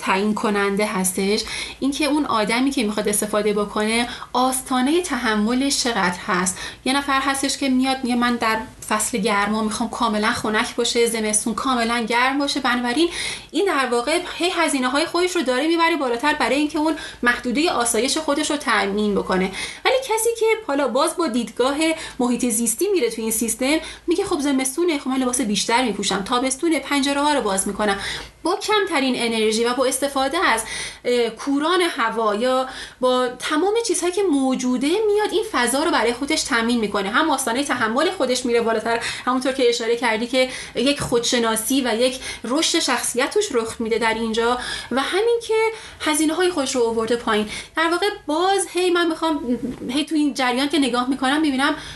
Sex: female